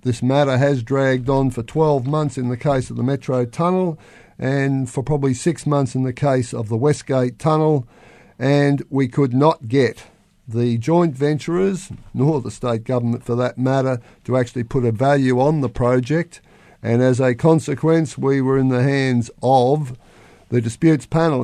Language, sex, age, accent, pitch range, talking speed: English, male, 50-69, Australian, 120-150 Hz, 175 wpm